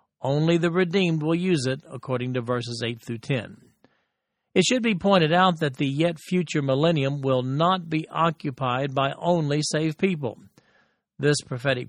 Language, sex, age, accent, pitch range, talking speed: English, male, 50-69, American, 130-165 Hz, 155 wpm